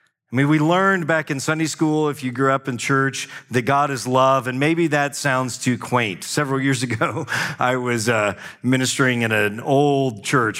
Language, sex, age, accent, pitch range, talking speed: English, male, 40-59, American, 120-150 Hz, 200 wpm